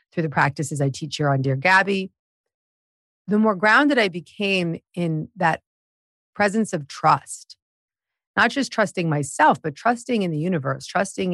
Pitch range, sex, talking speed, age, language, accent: 145-195 Hz, female, 155 wpm, 40-59, English, American